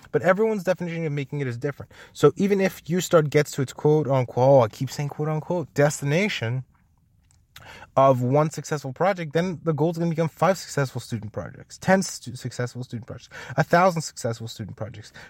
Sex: male